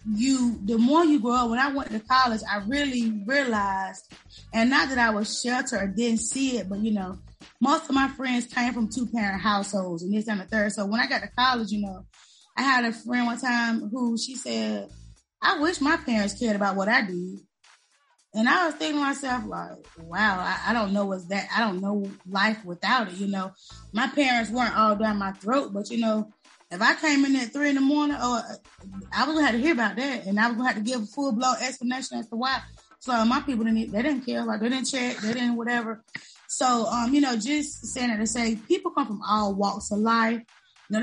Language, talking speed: English, 240 wpm